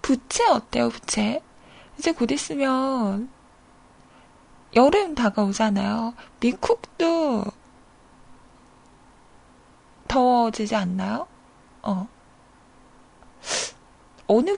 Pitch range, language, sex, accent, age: 220-285 Hz, Korean, female, native, 20-39